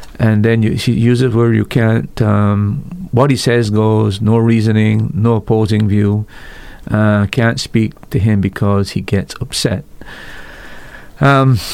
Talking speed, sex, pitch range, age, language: 150 wpm, male, 105-120 Hz, 50-69, English